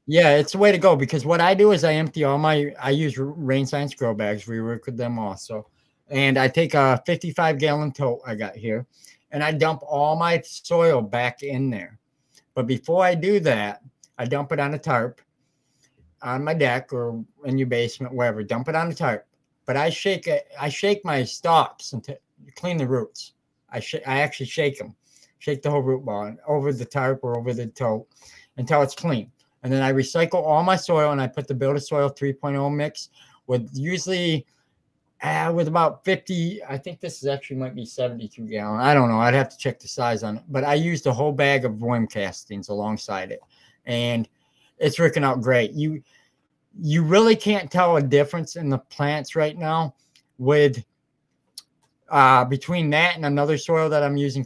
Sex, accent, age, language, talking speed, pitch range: male, American, 50-69, English, 200 wpm, 125-155 Hz